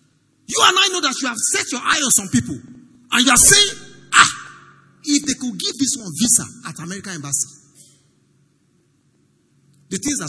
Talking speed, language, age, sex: 180 wpm, English, 50-69, male